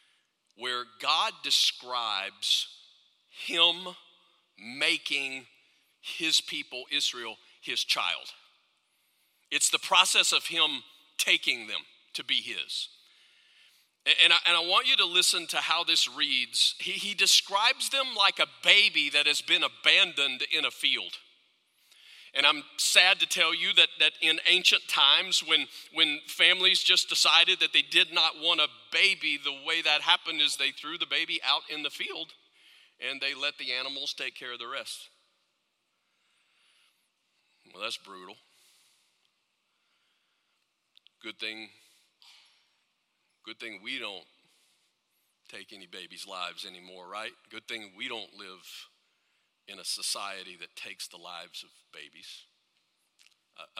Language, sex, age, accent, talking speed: English, male, 50-69, American, 135 wpm